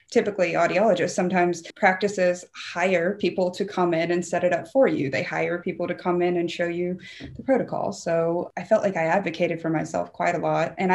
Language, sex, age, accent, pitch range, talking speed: English, female, 20-39, American, 165-185 Hz, 210 wpm